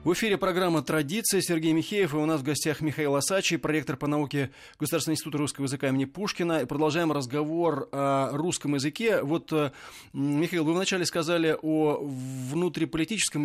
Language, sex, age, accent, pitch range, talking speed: Russian, male, 20-39, native, 145-170 Hz, 150 wpm